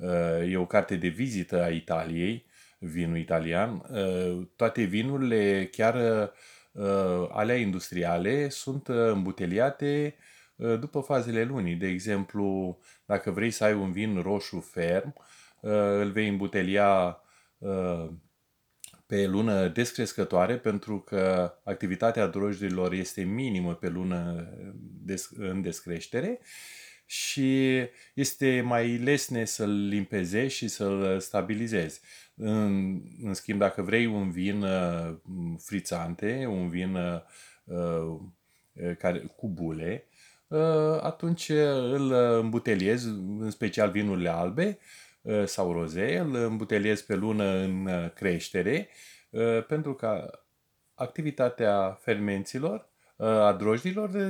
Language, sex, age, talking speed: Romanian, male, 20-39, 105 wpm